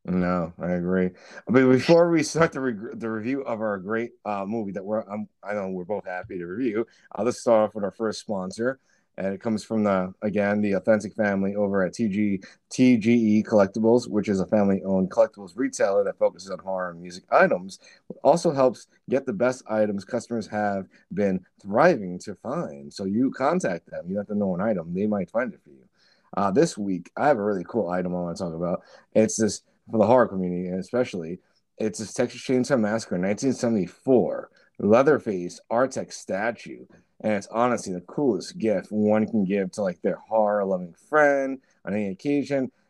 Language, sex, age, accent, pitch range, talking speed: English, male, 30-49, American, 100-120 Hz, 200 wpm